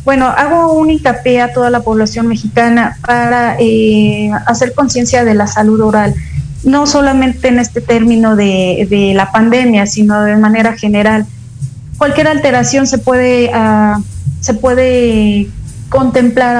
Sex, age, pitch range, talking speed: female, 30-49, 215-245 Hz, 135 wpm